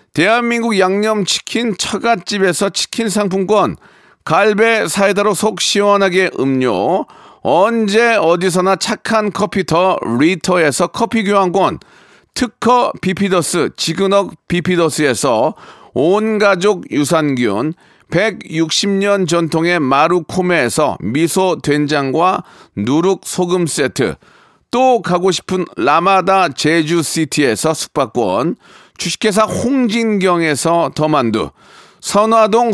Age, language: 40-59, Korean